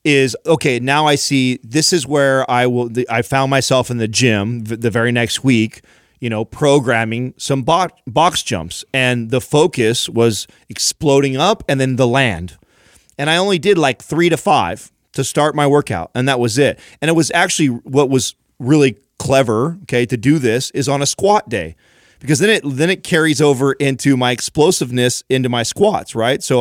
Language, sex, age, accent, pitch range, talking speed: English, male, 30-49, American, 120-145 Hz, 190 wpm